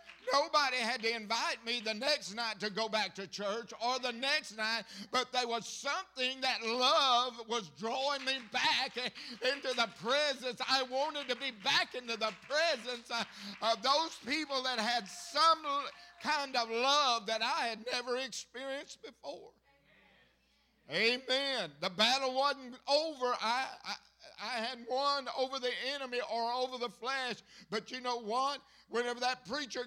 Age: 60-79